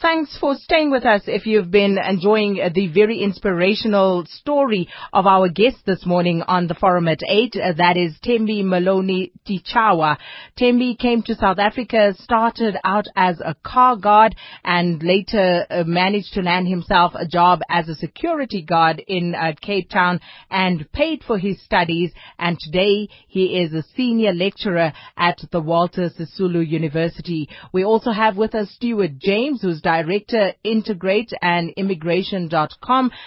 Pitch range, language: 175-215 Hz, English